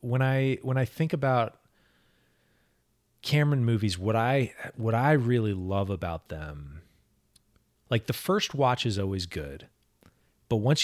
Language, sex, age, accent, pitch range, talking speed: English, male, 30-49, American, 95-125 Hz, 140 wpm